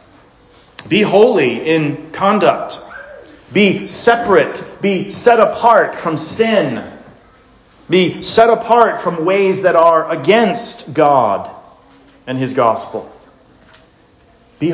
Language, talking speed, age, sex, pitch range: English, 100 wpm, 40-59, male, 150-200 Hz